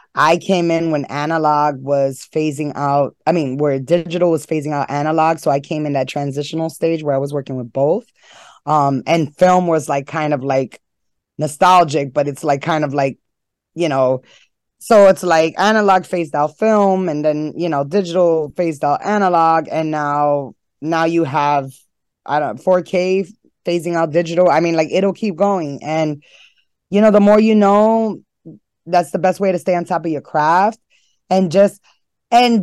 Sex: female